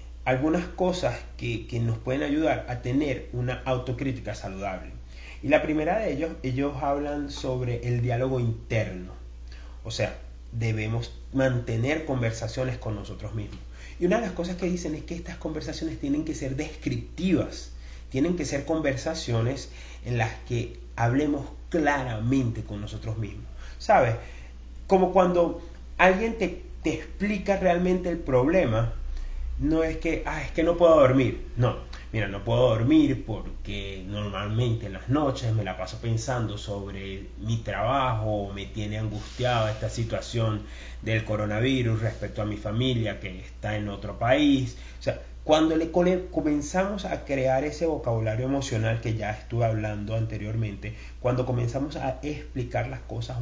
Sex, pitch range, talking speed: male, 105-150 Hz, 150 wpm